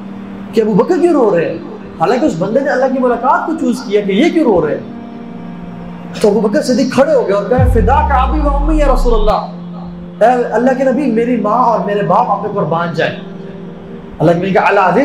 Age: 20-39